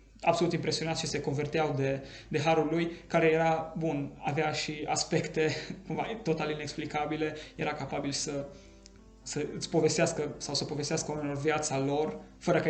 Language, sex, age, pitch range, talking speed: Romanian, male, 20-39, 140-160 Hz, 150 wpm